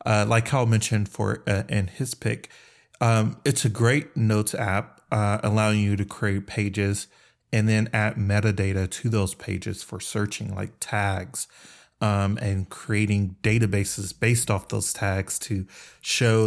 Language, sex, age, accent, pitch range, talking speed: English, male, 30-49, American, 100-110 Hz, 155 wpm